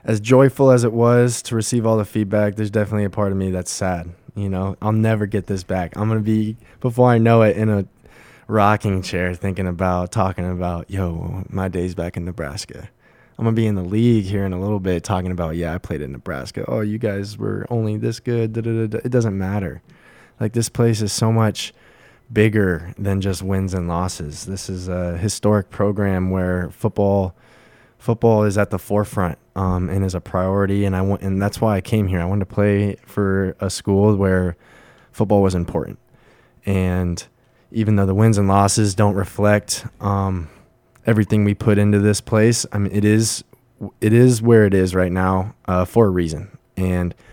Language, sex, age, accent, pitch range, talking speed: English, male, 20-39, American, 95-110 Hz, 205 wpm